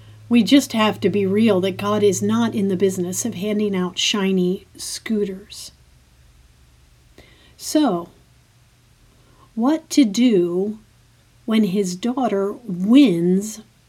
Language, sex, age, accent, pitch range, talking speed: English, female, 50-69, American, 180-255 Hz, 110 wpm